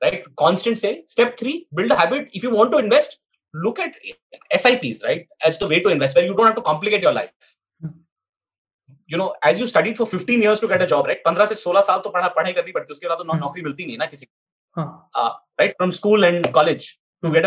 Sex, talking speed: male, 235 wpm